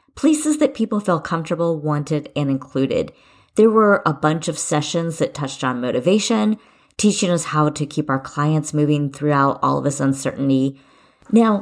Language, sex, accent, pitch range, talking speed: English, female, American, 145-210 Hz, 165 wpm